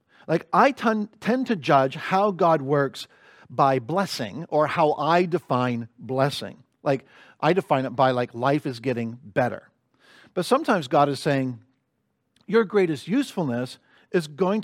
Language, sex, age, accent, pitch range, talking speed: English, male, 50-69, American, 145-195 Hz, 145 wpm